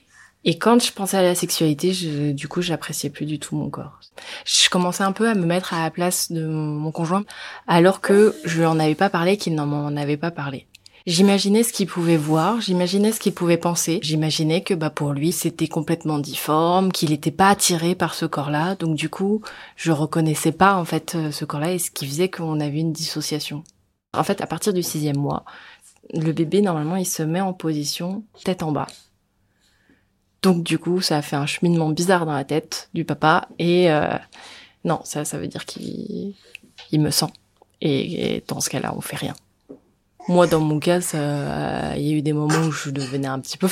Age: 20-39